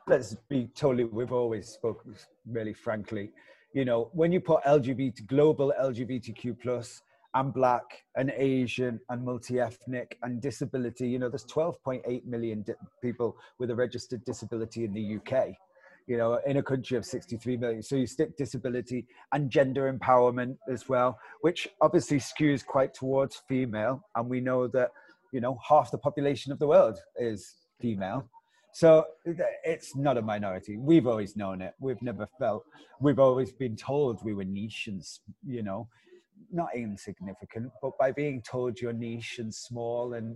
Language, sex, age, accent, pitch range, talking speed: English, male, 30-49, British, 110-135 Hz, 160 wpm